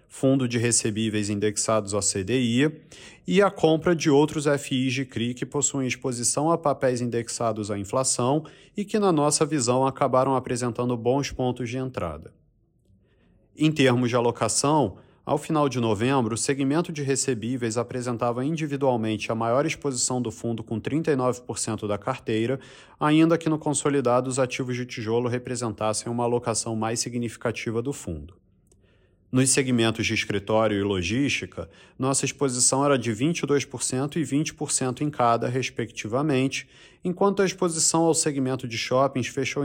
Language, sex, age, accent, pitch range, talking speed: Portuguese, male, 40-59, Brazilian, 115-140 Hz, 145 wpm